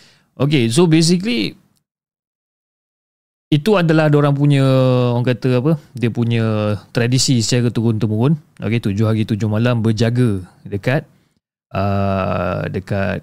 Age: 30-49